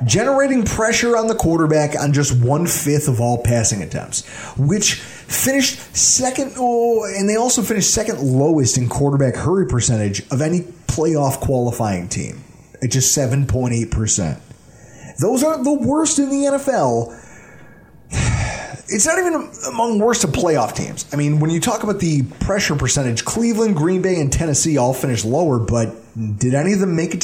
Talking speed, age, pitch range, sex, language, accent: 165 wpm, 30-49, 135-215 Hz, male, English, American